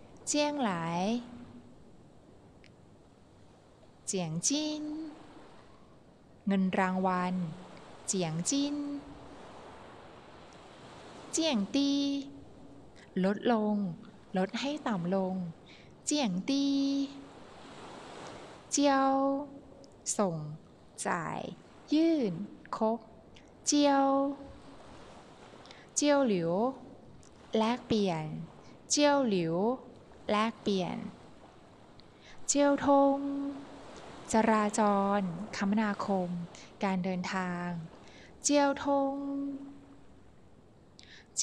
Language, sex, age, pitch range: Thai, female, 20-39, 190-280 Hz